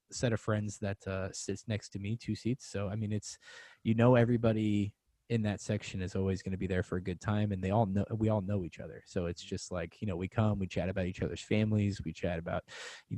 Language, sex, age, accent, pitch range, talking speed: English, male, 20-39, American, 90-115 Hz, 265 wpm